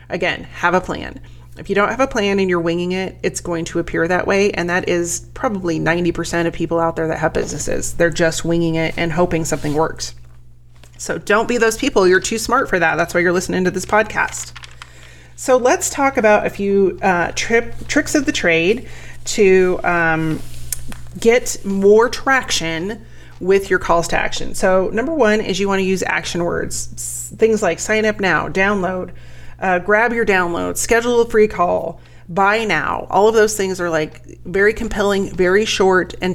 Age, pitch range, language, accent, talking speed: 30-49, 160-205 Hz, English, American, 190 wpm